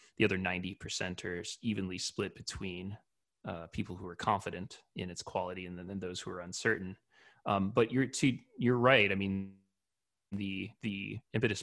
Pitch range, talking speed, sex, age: 95-110 Hz, 165 wpm, male, 30-49